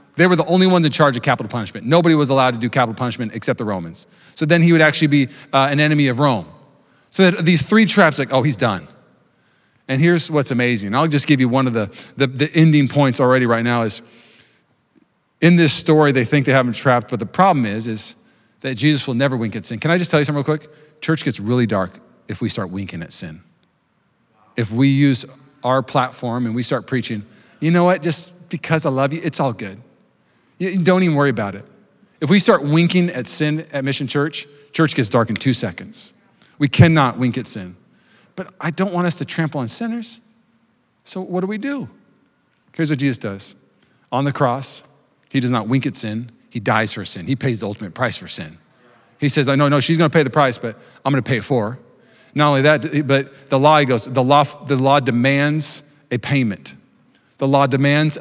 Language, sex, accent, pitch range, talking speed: English, male, American, 120-155 Hz, 220 wpm